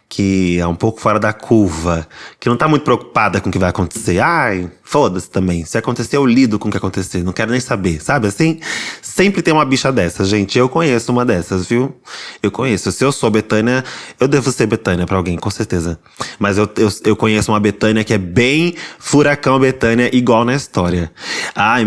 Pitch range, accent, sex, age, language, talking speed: 100-125 Hz, Brazilian, male, 20-39, Portuguese, 205 wpm